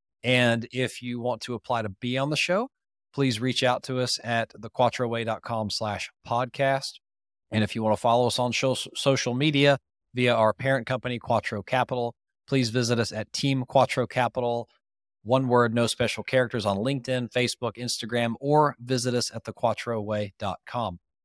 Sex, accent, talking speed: male, American, 160 wpm